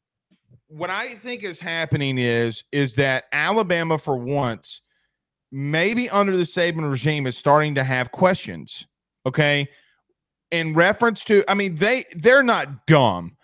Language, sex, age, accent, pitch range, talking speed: English, male, 30-49, American, 140-195 Hz, 140 wpm